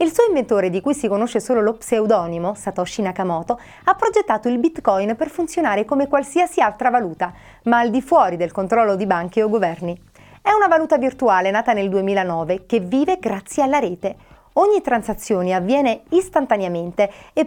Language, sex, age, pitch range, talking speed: Italian, female, 30-49, 195-280 Hz, 170 wpm